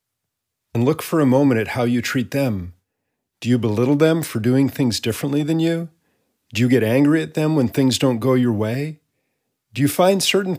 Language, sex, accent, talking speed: English, male, American, 205 wpm